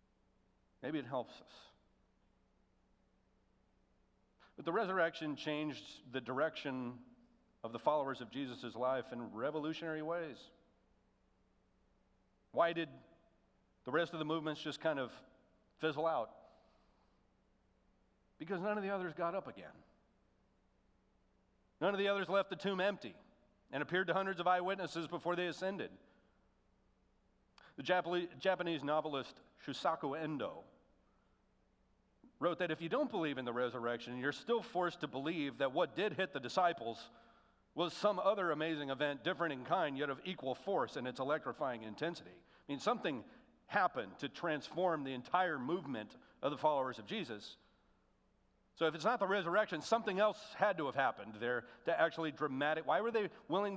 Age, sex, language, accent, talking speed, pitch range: 40-59, male, English, American, 145 wpm, 140-185 Hz